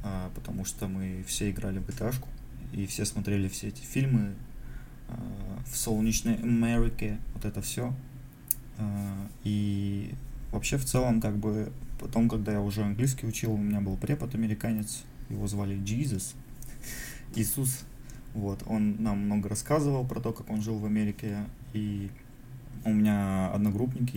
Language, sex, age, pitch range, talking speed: Russian, male, 20-39, 105-130 Hz, 145 wpm